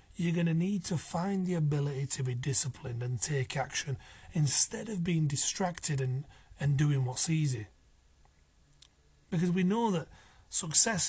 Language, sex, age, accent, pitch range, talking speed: English, male, 30-49, British, 120-180 Hz, 145 wpm